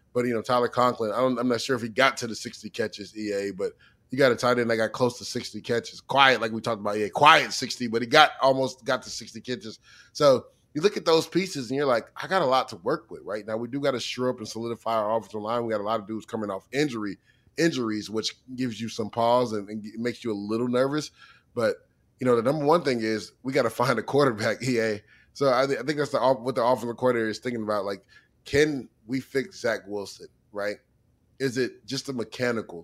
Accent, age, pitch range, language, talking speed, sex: American, 20-39, 110-125 Hz, English, 255 wpm, male